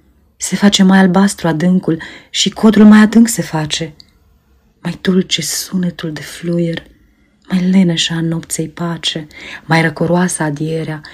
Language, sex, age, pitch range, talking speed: Romanian, female, 30-49, 150-175 Hz, 125 wpm